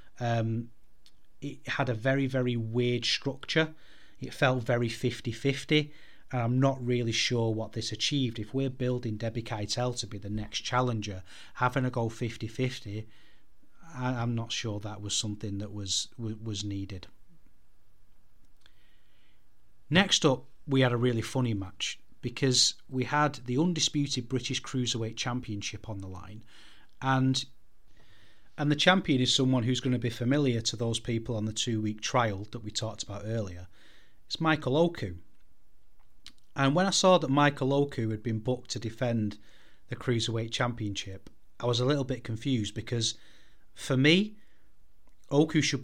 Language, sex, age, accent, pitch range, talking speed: English, male, 30-49, British, 110-135 Hz, 150 wpm